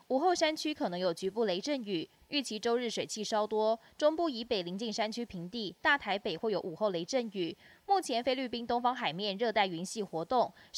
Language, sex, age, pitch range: Chinese, female, 20-39, 190-245 Hz